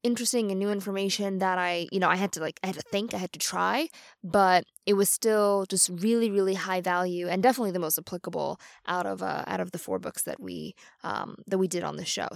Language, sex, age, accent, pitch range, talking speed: English, female, 20-39, American, 185-235 Hz, 250 wpm